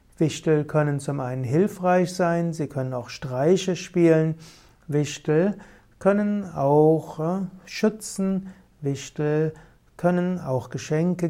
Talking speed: 100 wpm